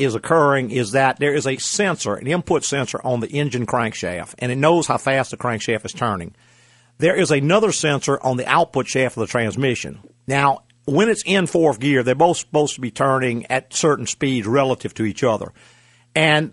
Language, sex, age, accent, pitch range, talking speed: English, male, 50-69, American, 125-160 Hz, 200 wpm